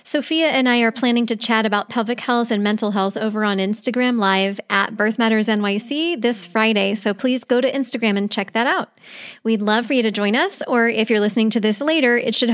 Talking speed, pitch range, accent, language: 230 wpm, 205-245 Hz, American, English